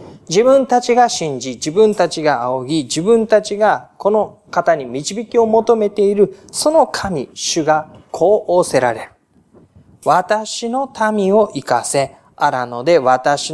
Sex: male